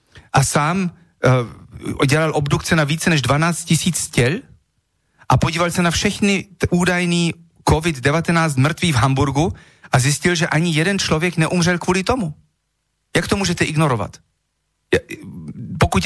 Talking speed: 135 wpm